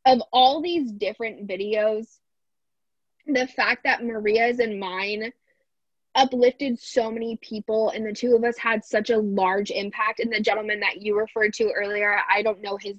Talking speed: 170 wpm